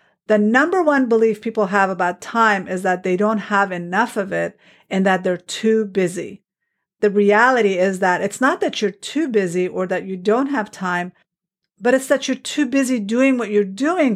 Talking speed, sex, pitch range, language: 200 wpm, female, 180-225 Hz, English